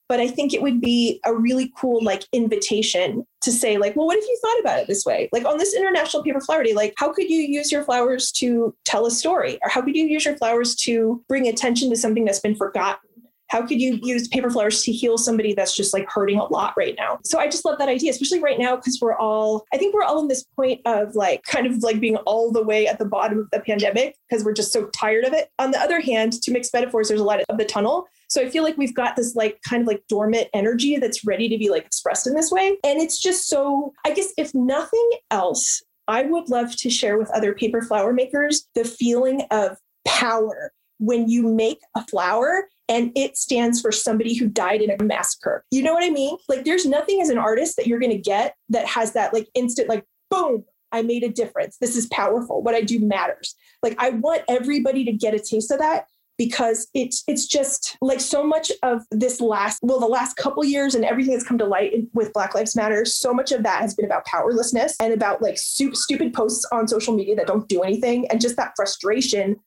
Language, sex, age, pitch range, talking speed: English, female, 20-39, 220-280 Hz, 240 wpm